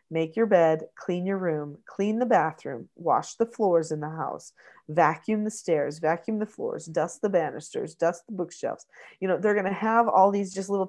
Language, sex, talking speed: English, female, 205 wpm